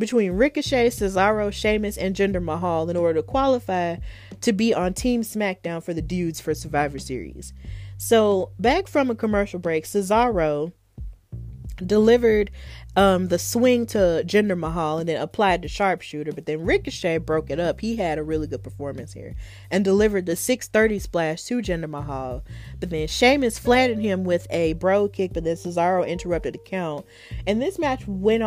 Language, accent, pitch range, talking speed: English, American, 155-210 Hz, 170 wpm